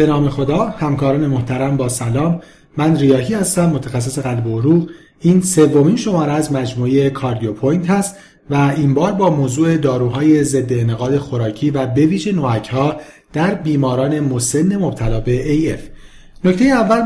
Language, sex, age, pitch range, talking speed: Persian, male, 40-59, 135-185 Hz, 150 wpm